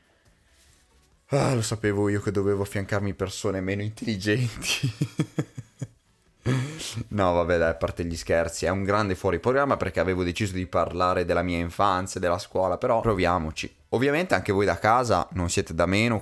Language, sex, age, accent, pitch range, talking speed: Italian, male, 20-39, native, 80-120 Hz, 160 wpm